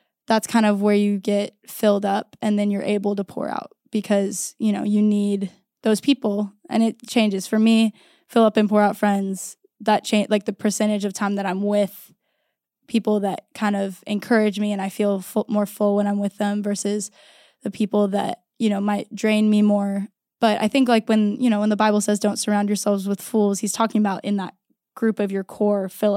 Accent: American